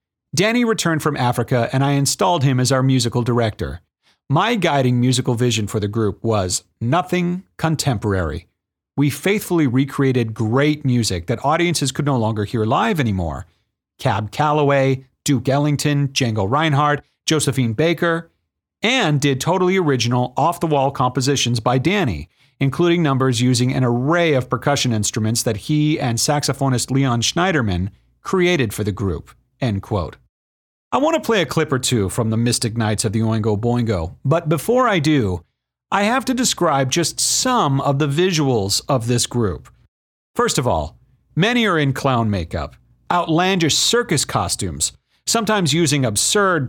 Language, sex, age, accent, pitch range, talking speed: English, male, 40-59, American, 115-155 Hz, 150 wpm